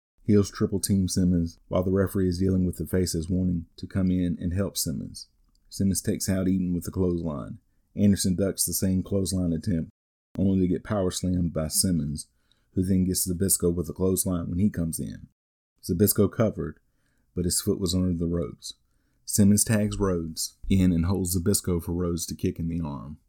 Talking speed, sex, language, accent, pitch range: 185 wpm, male, English, American, 85-100 Hz